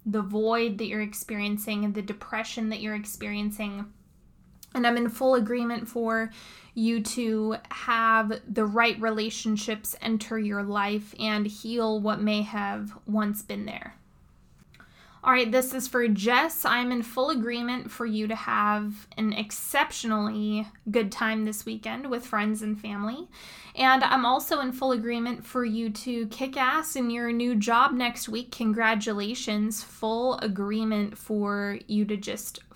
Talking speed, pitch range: 150 wpm, 215-240 Hz